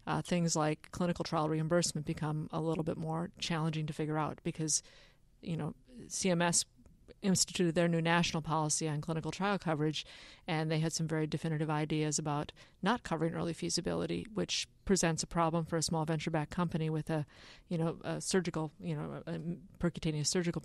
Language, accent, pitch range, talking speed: English, American, 155-175 Hz, 175 wpm